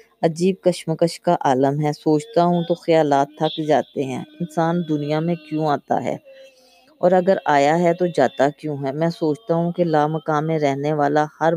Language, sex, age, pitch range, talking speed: Urdu, female, 20-39, 145-175 Hz, 180 wpm